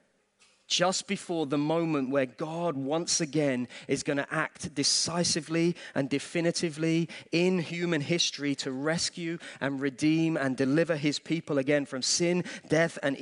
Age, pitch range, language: 30-49, 135-170 Hz, English